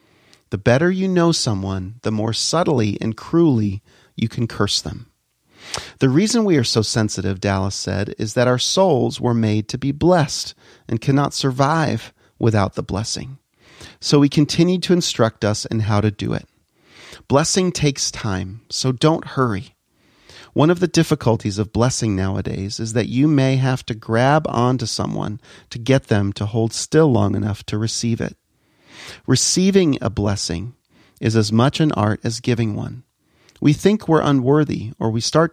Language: English